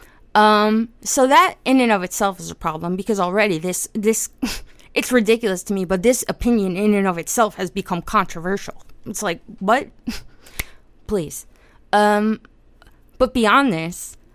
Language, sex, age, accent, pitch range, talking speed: English, female, 20-39, American, 190-250 Hz, 150 wpm